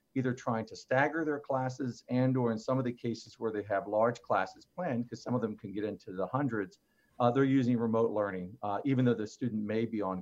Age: 50-69